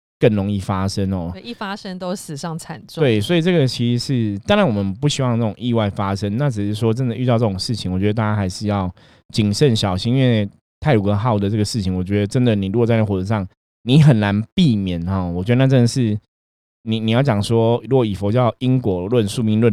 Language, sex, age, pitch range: Chinese, male, 20-39, 100-120 Hz